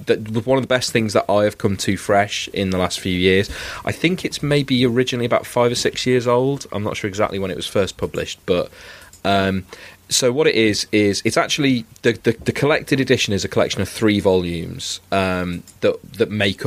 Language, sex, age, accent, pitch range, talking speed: English, male, 30-49, British, 90-110 Hz, 220 wpm